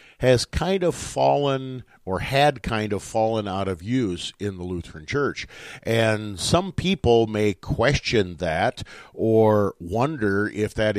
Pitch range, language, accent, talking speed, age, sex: 95-120 Hz, English, American, 140 wpm, 50-69, male